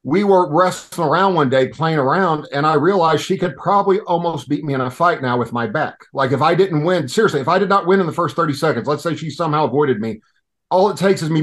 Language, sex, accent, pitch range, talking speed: English, male, American, 130-165 Hz, 270 wpm